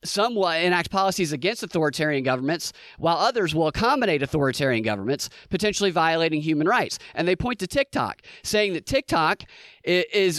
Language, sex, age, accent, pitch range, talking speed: English, male, 30-49, American, 150-195 Hz, 150 wpm